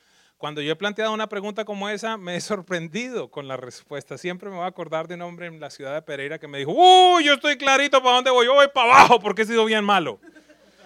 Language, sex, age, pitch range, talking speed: English, male, 30-49, 155-210 Hz, 255 wpm